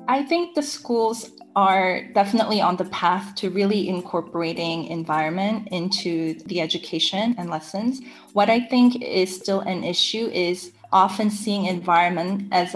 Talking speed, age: 140 wpm, 20-39